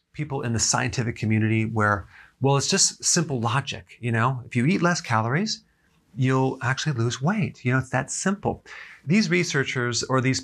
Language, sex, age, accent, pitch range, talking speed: English, male, 40-59, American, 115-150 Hz, 180 wpm